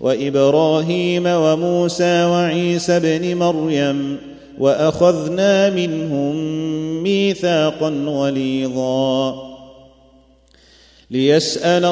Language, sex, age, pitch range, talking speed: Arabic, male, 30-49, 140-175 Hz, 50 wpm